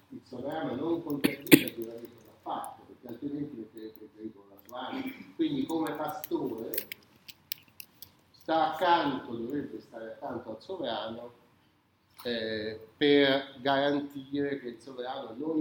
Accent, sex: native, male